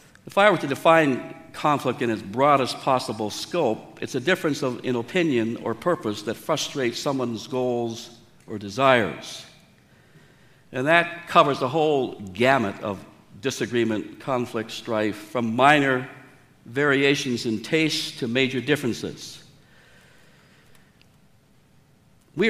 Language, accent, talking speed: English, American, 115 wpm